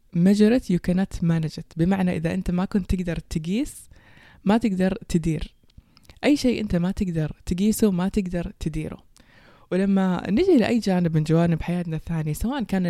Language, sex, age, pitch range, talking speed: Persian, female, 20-39, 160-195 Hz, 135 wpm